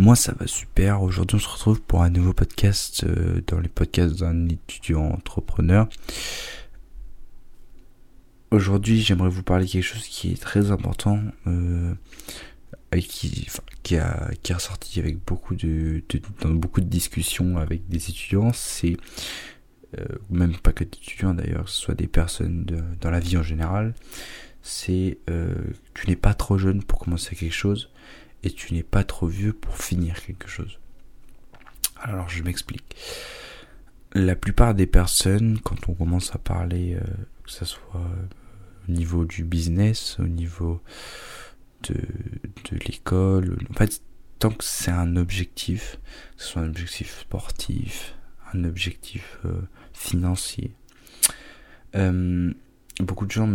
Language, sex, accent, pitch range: French, male, French, 85-100 Hz